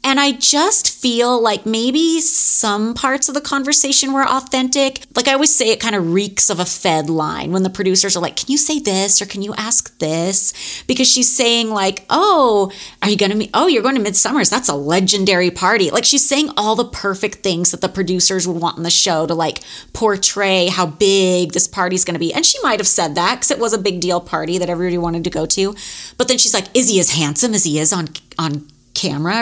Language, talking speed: English, 240 wpm